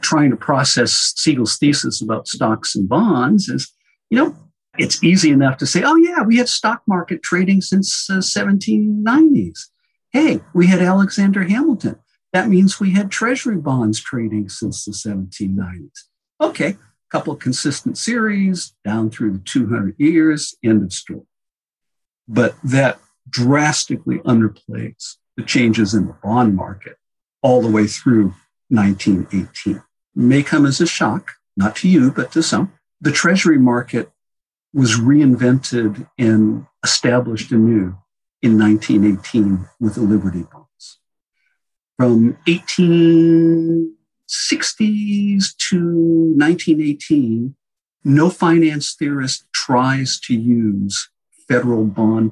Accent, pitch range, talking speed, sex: American, 110-175 Hz, 125 wpm, male